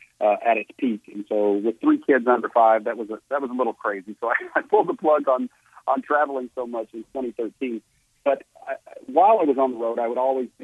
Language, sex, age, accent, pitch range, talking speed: English, male, 50-69, American, 110-145 Hz, 245 wpm